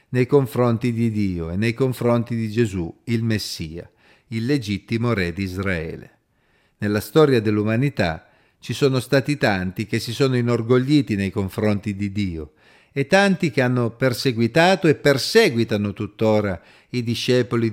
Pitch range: 100-130 Hz